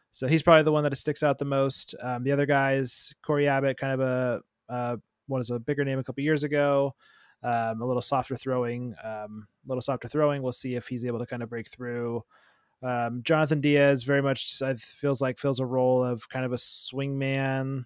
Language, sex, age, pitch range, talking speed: English, male, 20-39, 120-135 Hz, 220 wpm